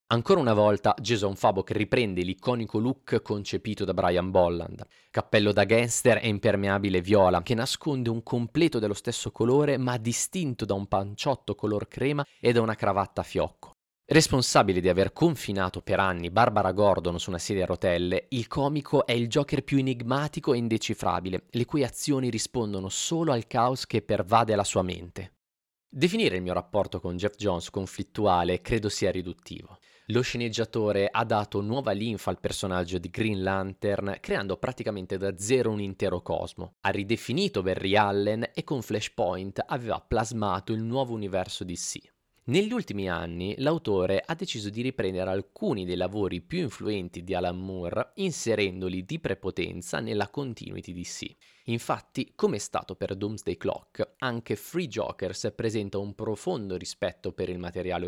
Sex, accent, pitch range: male, native, 95-120 Hz